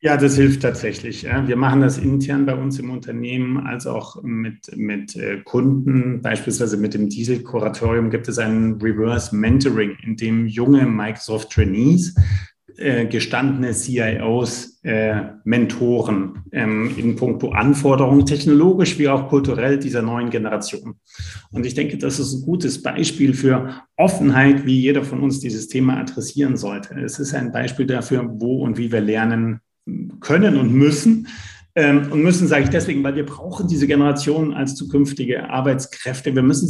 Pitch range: 115-140 Hz